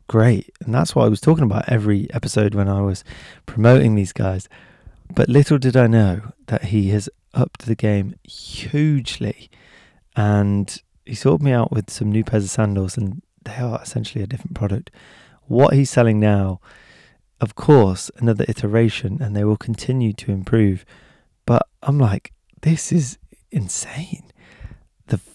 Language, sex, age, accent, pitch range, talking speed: English, male, 20-39, British, 100-125 Hz, 160 wpm